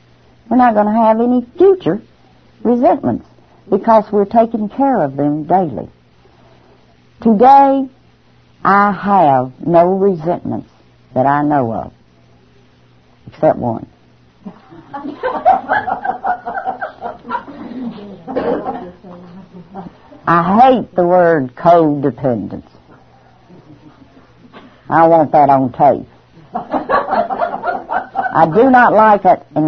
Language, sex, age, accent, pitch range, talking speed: English, female, 60-79, American, 145-230 Hz, 85 wpm